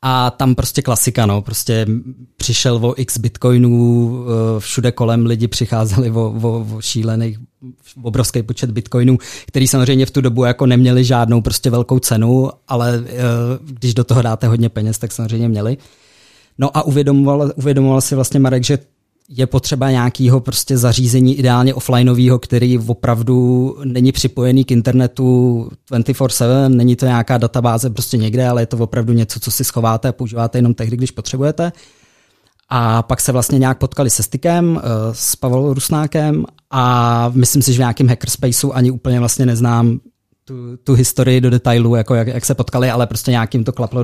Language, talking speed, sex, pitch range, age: Czech, 165 wpm, male, 115-130 Hz, 20-39